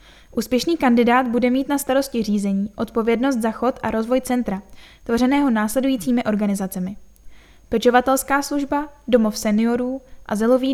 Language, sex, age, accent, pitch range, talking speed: Czech, female, 10-29, native, 220-265 Hz, 115 wpm